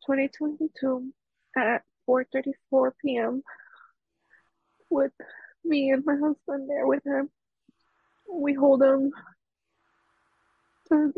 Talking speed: 95 wpm